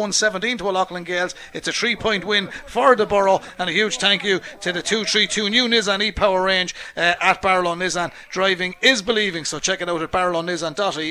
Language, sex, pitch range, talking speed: English, male, 175-215 Hz, 200 wpm